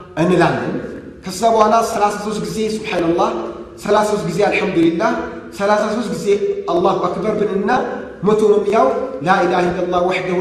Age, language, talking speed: 30-49, Amharic, 105 wpm